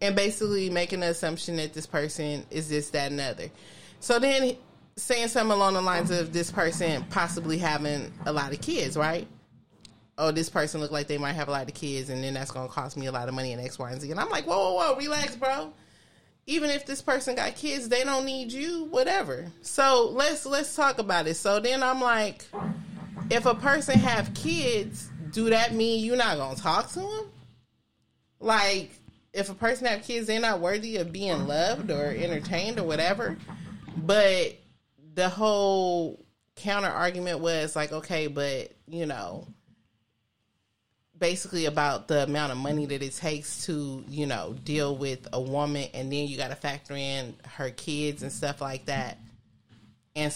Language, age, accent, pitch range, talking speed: English, 30-49, American, 135-200 Hz, 190 wpm